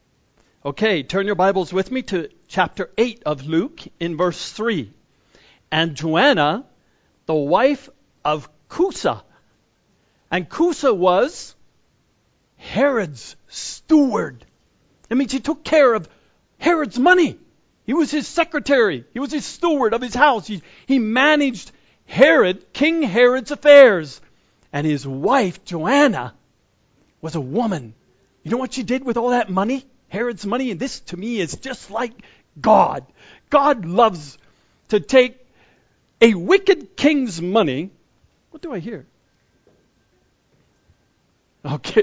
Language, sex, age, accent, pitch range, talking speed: English, male, 40-59, American, 180-280 Hz, 130 wpm